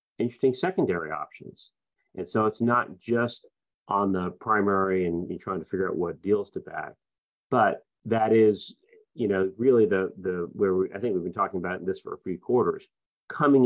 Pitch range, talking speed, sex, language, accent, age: 100-125 Hz, 190 wpm, male, English, American, 40-59